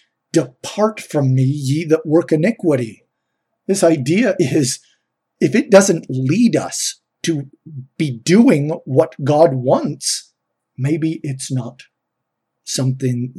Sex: male